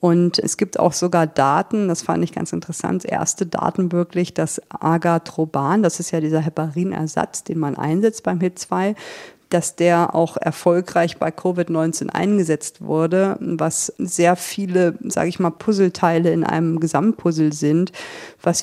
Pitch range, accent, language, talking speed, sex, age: 165-185 Hz, German, German, 150 wpm, female, 50-69